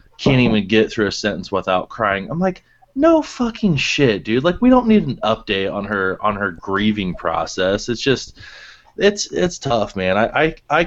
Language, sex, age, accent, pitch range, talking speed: English, male, 20-39, American, 95-115 Hz, 195 wpm